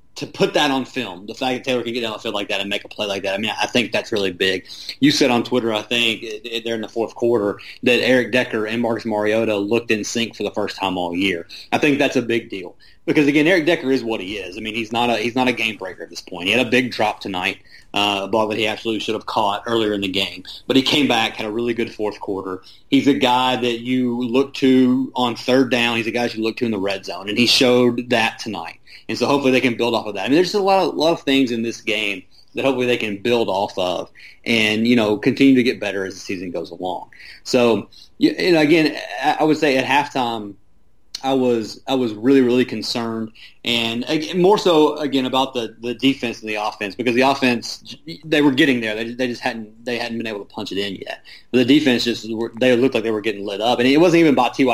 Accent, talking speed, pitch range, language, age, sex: American, 265 wpm, 110-130 Hz, English, 30-49, male